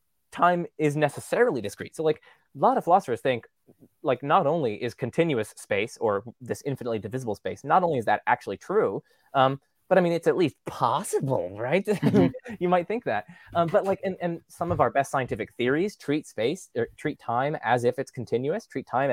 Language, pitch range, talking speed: English, 130-175 Hz, 200 wpm